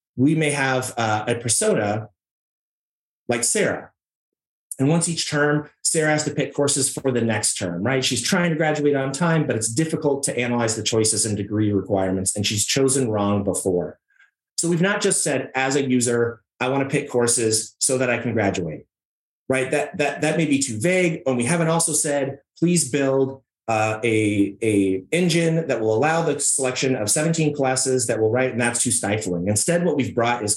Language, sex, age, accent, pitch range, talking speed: English, male, 30-49, American, 110-150 Hz, 195 wpm